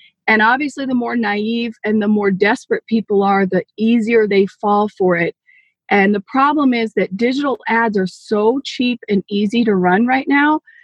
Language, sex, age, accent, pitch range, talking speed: English, female, 30-49, American, 210-255 Hz, 185 wpm